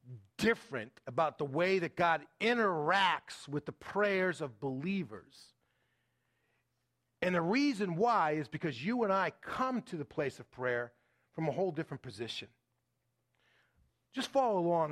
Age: 40-59